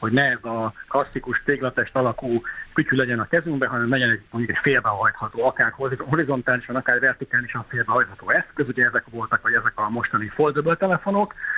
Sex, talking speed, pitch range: male, 155 wpm, 120-165 Hz